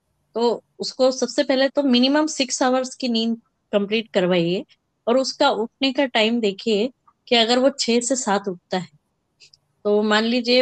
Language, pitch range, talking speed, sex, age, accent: Hindi, 200-260 Hz, 165 wpm, female, 20-39, native